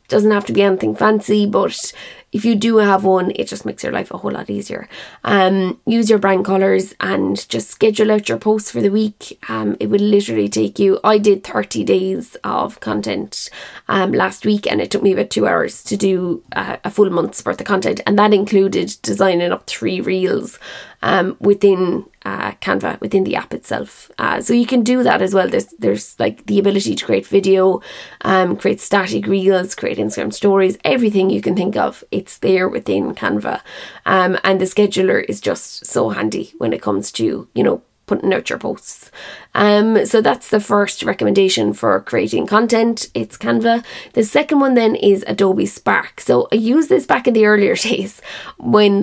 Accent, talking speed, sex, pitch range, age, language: Irish, 195 wpm, female, 185-215 Hz, 20-39, English